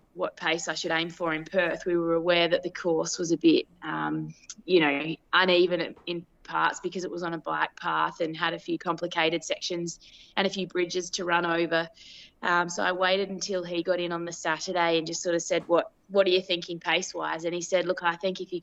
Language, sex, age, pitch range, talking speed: English, female, 20-39, 165-185 Hz, 240 wpm